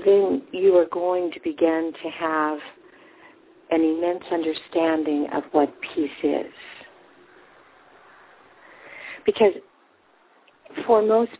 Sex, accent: female, American